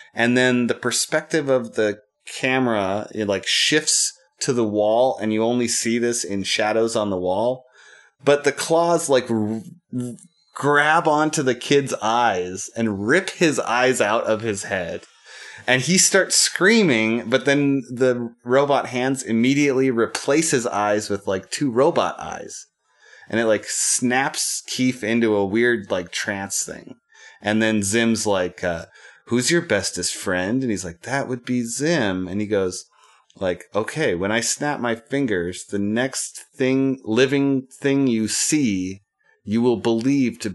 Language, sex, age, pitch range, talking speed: English, male, 30-49, 105-130 Hz, 160 wpm